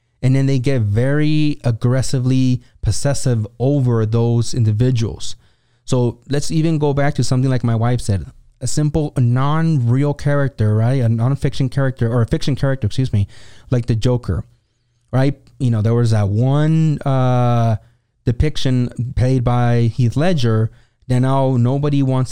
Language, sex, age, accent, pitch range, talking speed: English, male, 20-39, American, 120-145 Hz, 155 wpm